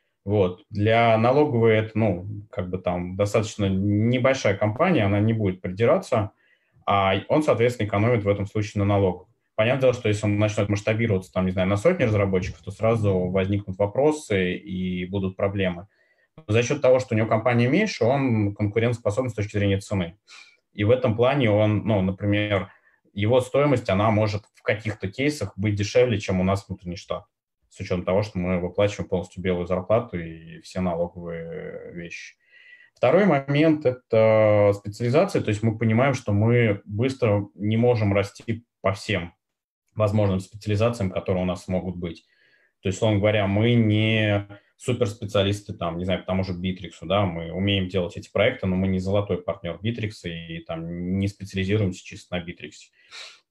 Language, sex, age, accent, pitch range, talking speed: Russian, male, 20-39, native, 95-115 Hz, 165 wpm